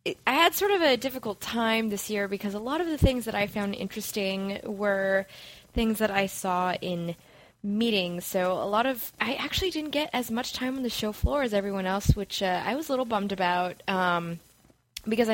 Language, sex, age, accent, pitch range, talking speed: English, female, 20-39, American, 185-225 Hz, 210 wpm